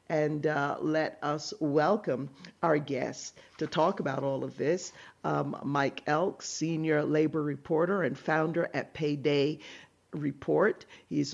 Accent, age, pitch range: American, 50-69, 145-165 Hz